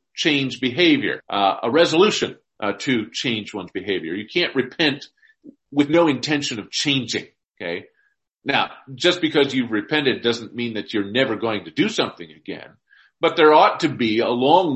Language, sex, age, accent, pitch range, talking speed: English, male, 40-59, American, 120-190 Hz, 160 wpm